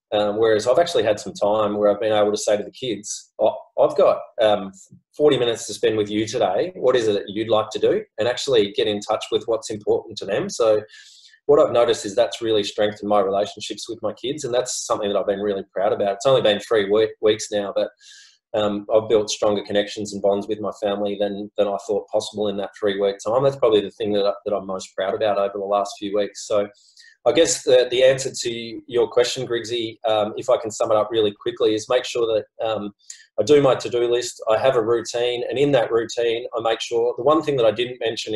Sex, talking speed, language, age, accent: male, 245 wpm, English, 20-39, Australian